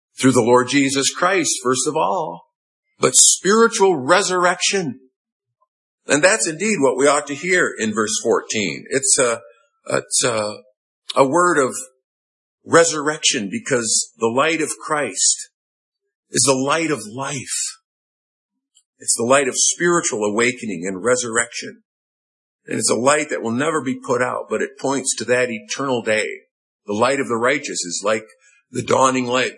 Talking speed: 150 wpm